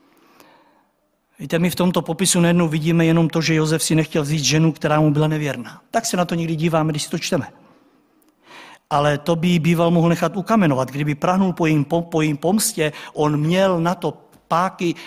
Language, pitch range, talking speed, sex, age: Czech, 160-250 Hz, 195 wpm, male, 50-69